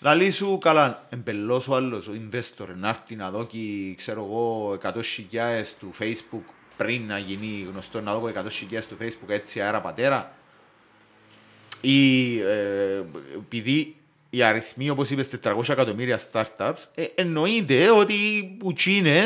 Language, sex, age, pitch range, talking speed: Greek, male, 30-49, 110-150 Hz, 135 wpm